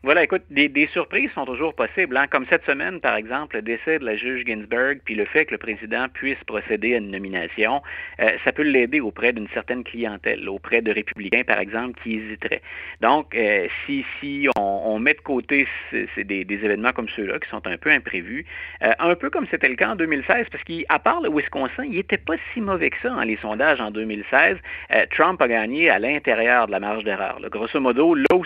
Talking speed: 220 wpm